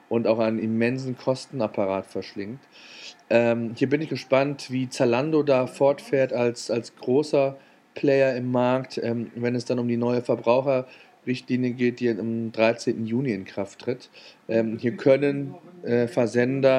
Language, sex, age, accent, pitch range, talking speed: German, male, 40-59, German, 115-135 Hz, 150 wpm